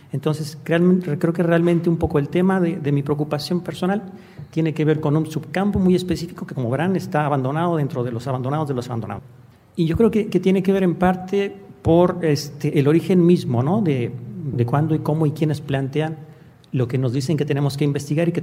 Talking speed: 215 wpm